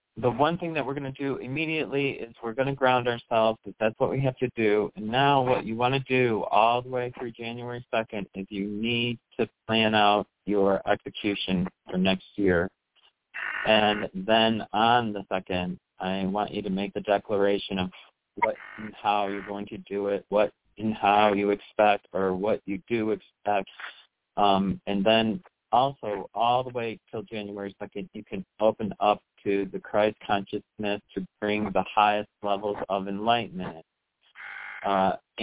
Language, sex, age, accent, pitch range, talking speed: English, male, 40-59, American, 100-120 Hz, 175 wpm